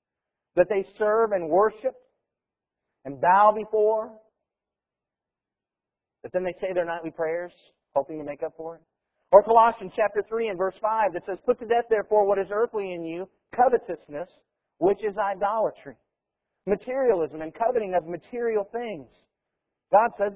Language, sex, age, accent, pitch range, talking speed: English, male, 50-69, American, 170-230 Hz, 150 wpm